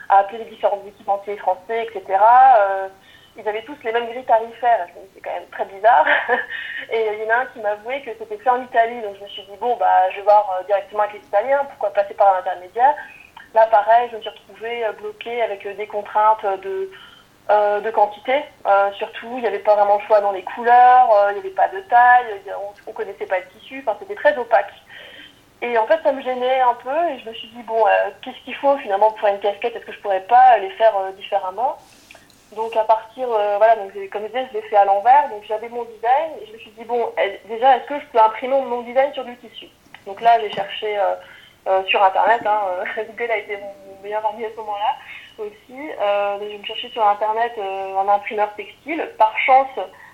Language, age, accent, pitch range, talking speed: French, 30-49, French, 205-245 Hz, 230 wpm